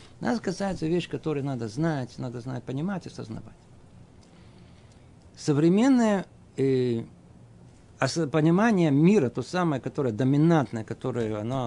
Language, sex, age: Russian, male, 50-69